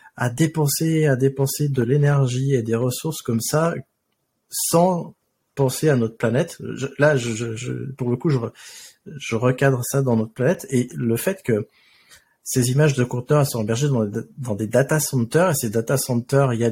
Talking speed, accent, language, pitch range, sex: 185 wpm, French, French, 115-150 Hz, male